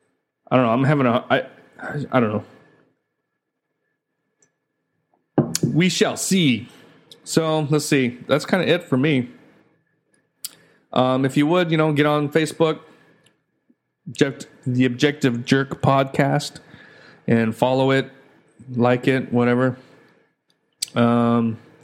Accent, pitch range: American, 115-135 Hz